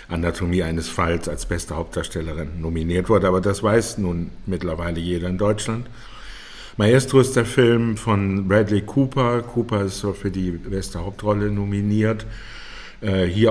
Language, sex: German, male